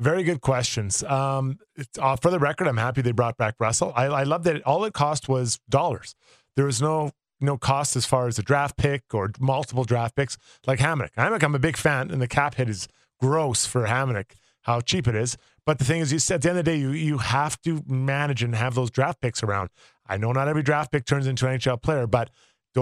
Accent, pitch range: American, 120-145 Hz